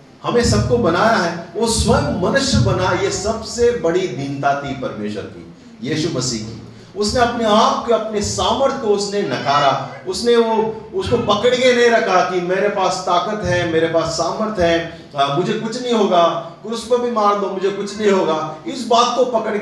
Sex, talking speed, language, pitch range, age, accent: male, 155 wpm, Hindi, 135-210 Hz, 40-59, native